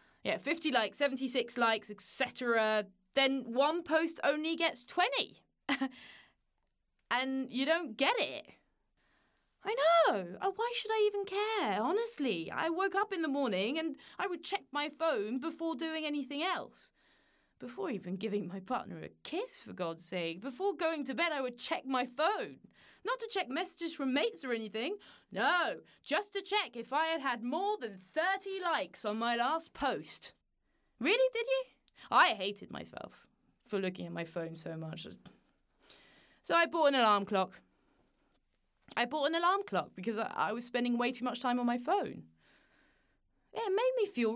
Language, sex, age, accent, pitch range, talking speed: English, female, 20-39, British, 220-335 Hz, 165 wpm